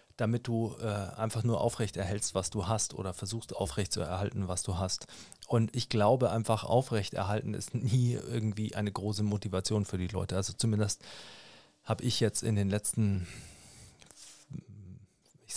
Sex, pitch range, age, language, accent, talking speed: male, 105-125 Hz, 40-59, German, German, 150 wpm